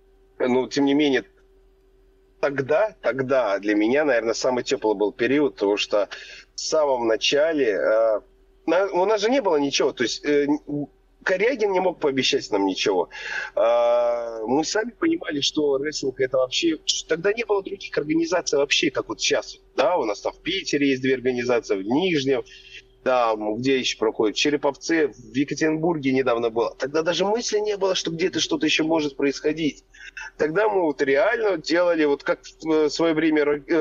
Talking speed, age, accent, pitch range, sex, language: 170 wpm, 30-49, native, 140-230 Hz, male, Russian